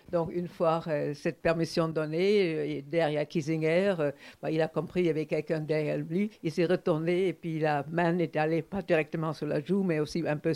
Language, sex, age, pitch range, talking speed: French, female, 60-79, 155-175 Hz, 220 wpm